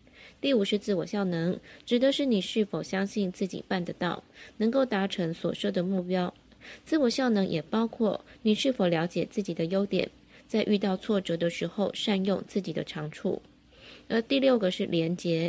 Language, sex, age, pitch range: Chinese, female, 20-39, 175-220 Hz